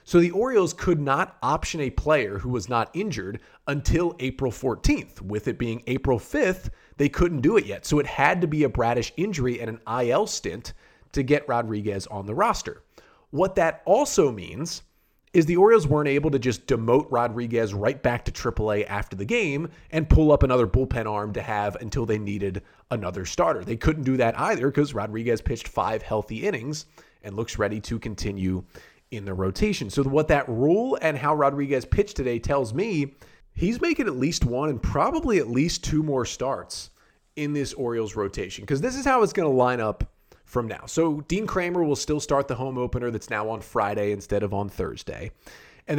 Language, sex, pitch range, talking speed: English, male, 110-145 Hz, 195 wpm